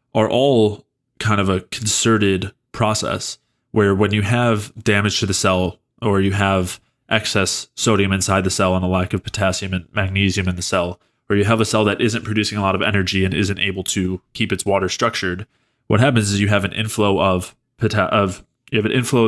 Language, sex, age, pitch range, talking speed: English, male, 20-39, 95-110 Hz, 210 wpm